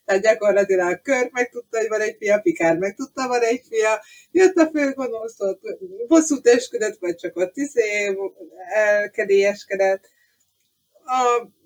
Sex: female